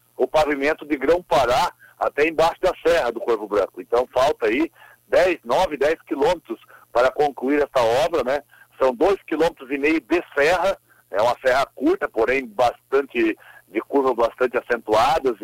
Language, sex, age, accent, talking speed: Portuguese, male, 60-79, Brazilian, 160 wpm